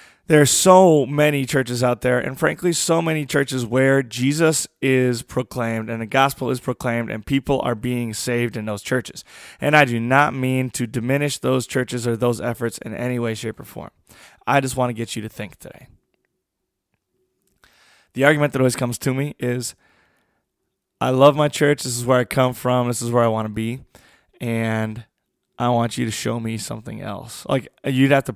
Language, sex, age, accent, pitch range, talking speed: English, male, 20-39, American, 115-140 Hz, 200 wpm